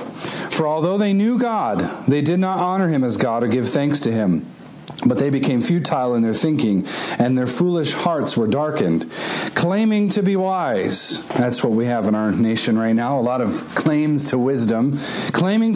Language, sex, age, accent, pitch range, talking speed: English, male, 40-59, American, 125-180 Hz, 190 wpm